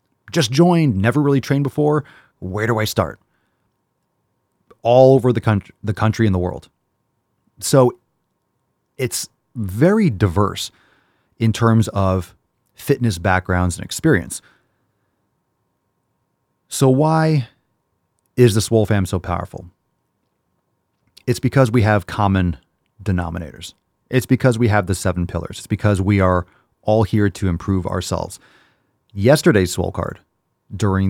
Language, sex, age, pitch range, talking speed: English, male, 30-49, 95-115 Hz, 120 wpm